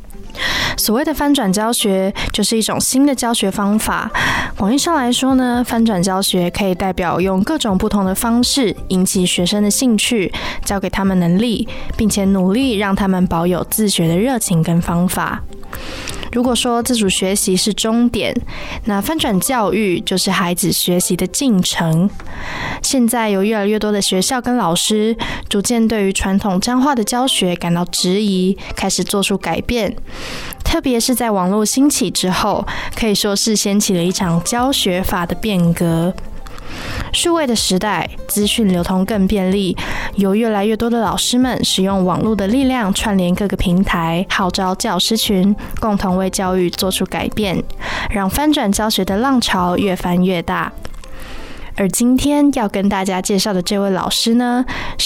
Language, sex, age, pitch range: Chinese, female, 20-39, 185-230 Hz